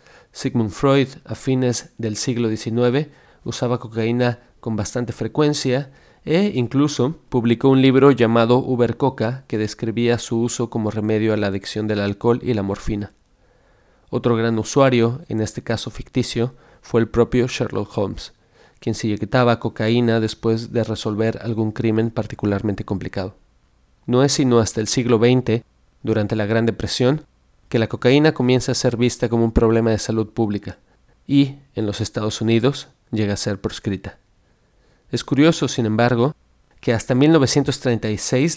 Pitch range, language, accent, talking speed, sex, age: 110-125 Hz, Spanish, Mexican, 150 wpm, male, 30-49